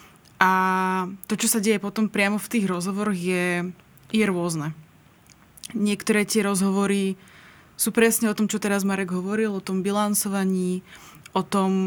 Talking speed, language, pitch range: 140 wpm, Slovak, 185-210 Hz